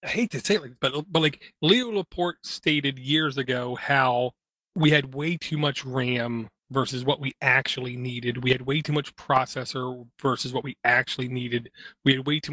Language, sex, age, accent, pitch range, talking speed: English, male, 30-49, American, 130-160 Hz, 190 wpm